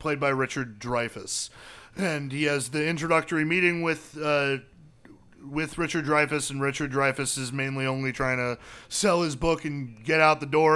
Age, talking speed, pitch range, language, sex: 30-49, 175 wpm, 130-165 Hz, English, male